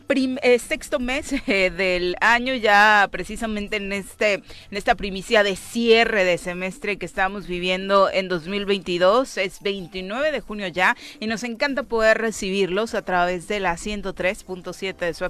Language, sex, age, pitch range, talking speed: Spanish, female, 30-49, 180-225 Hz, 155 wpm